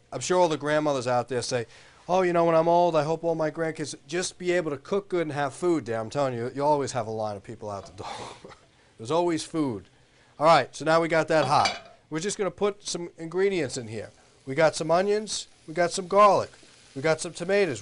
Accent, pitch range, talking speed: American, 130-175 Hz, 250 wpm